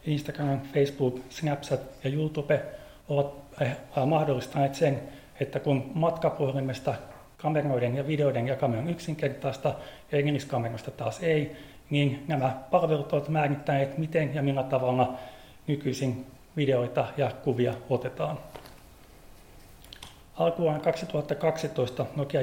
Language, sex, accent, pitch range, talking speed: Finnish, male, native, 130-150 Hz, 100 wpm